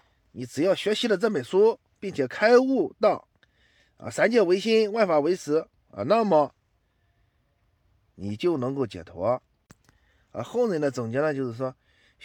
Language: Chinese